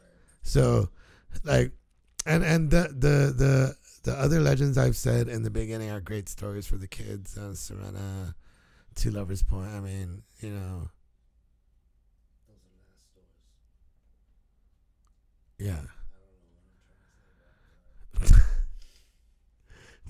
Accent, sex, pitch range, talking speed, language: American, male, 80-110 Hz, 95 wpm, English